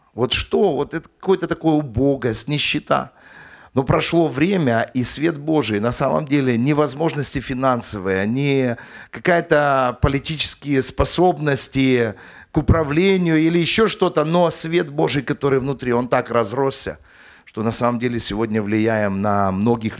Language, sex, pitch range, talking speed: English, male, 115-165 Hz, 140 wpm